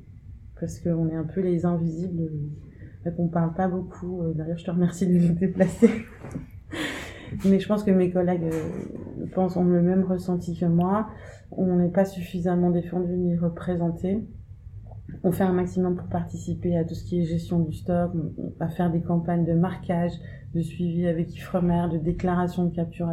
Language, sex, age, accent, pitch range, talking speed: French, female, 30-49, French, 160-180 Hz, 180 wpm